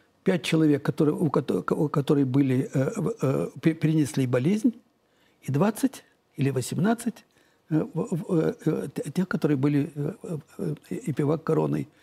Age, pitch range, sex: 60-79, 135-170 Hz, male